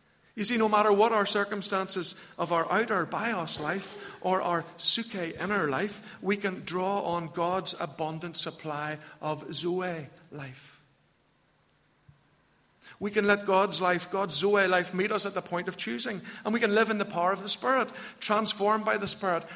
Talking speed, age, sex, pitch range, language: 170 wpm, 50-69, male, 150-190 Hz, English